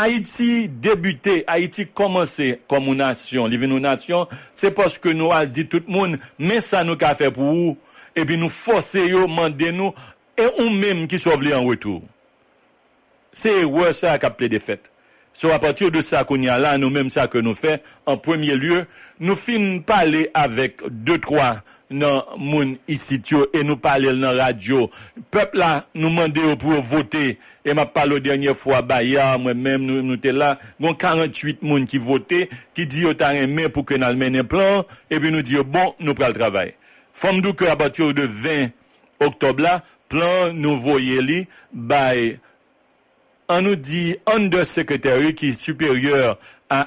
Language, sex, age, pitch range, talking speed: English, male, 60-79, 135-180 Hz, 185 wpm